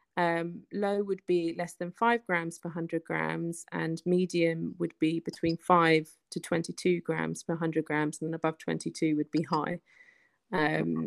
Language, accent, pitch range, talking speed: English, British, 165-200 Hz, 165 wpm